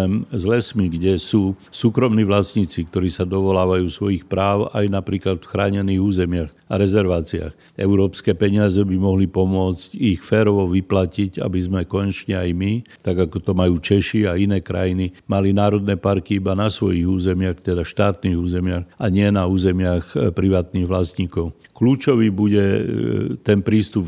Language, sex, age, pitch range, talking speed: Slovak, male, 60-79, 90-105 Hz, 145 wpm